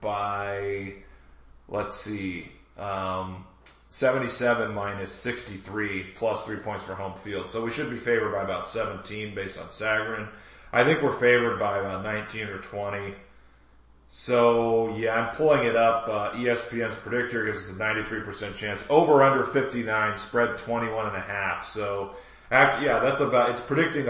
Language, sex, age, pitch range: English, male, 30-49, 100-125 Hz